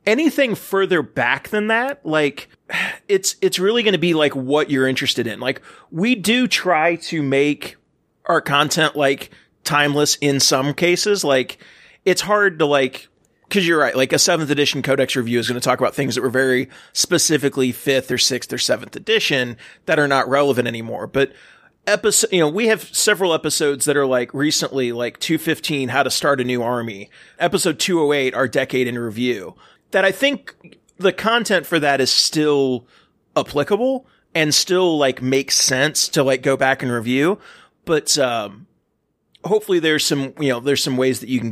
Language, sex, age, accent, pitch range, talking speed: English, male, 30-49, American, 130-170 Hz, 180 wpm